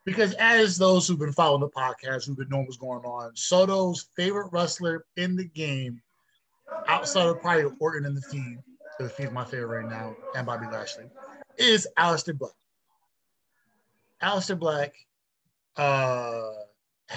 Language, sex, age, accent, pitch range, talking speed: English, male, 20-39, American, 130-170 Hz, 145 wpm